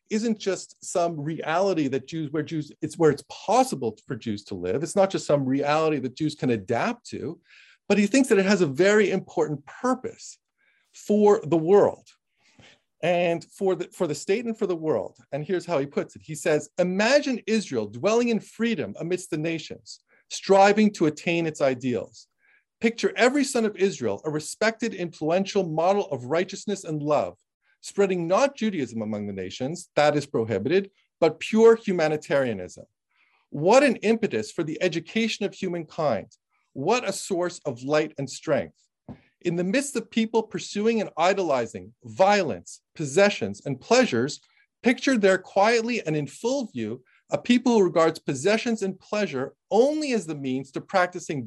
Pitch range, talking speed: 155-215 Hz, 165 wpm